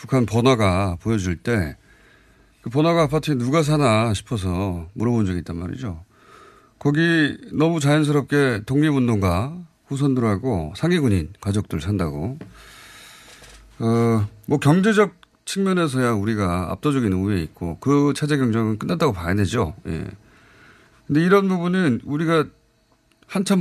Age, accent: 40-59, native